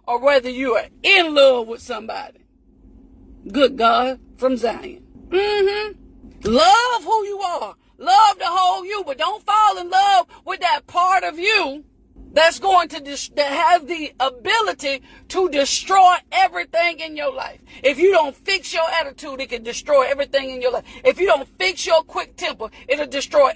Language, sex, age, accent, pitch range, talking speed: English, female, 40-59, American, 275-370 Hz, 175 wpm